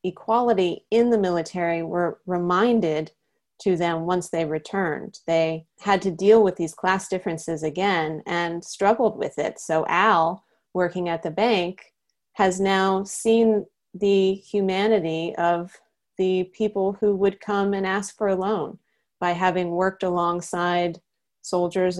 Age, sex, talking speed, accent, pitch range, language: 30-49, female, 140 wpm, American, 175-210 Hz, English